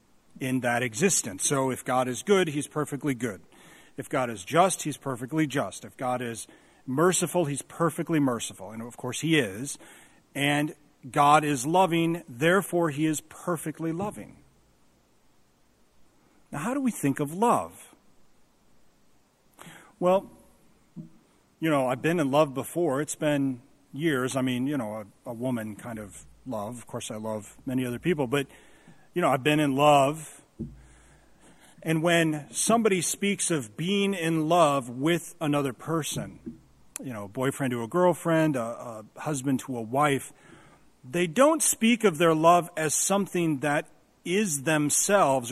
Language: English